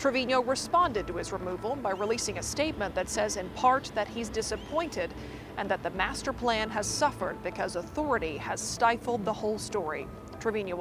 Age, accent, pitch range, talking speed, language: 40-59, American, 215-260 Hz, 170 wpm, English